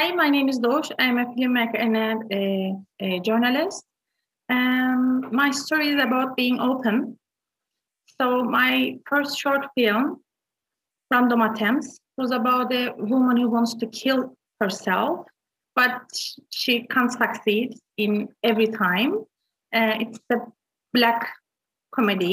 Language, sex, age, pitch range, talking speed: English, female, 30-49, 220-275 Hz, 125 wpm